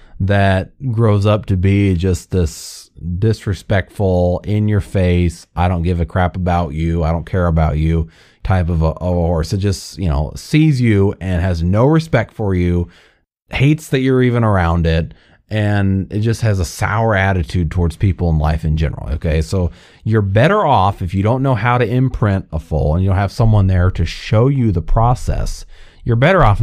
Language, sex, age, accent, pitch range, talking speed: English, male, 30-49, American, 85-110 Hz, 195 wpm